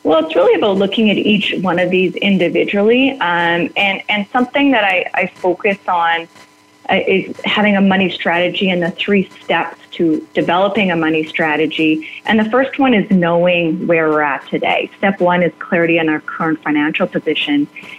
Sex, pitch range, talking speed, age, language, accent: female, 165-215 Hz, 175 wpm, 30-49, English, American